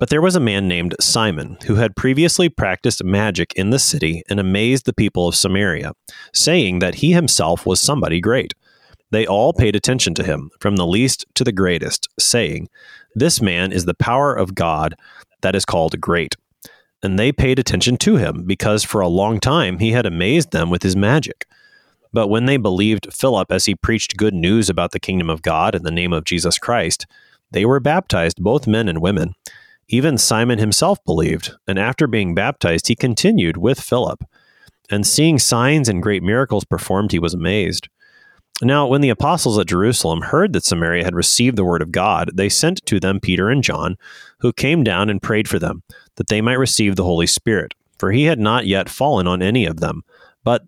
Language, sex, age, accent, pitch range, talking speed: English, male, 30-49, American, 90-125 Hz, 200 wpm